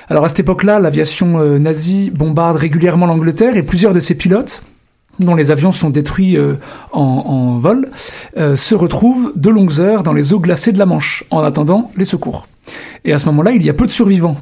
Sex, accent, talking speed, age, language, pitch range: male, French, 210 wpm, 40-59, French, 160-210 Hz